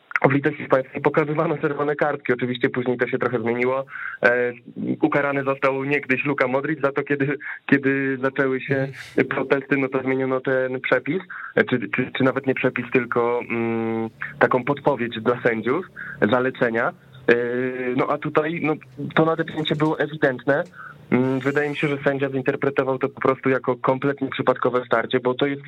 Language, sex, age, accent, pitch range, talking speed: Polish, male, 20-39, native, 125-145 Hz, 150 wpm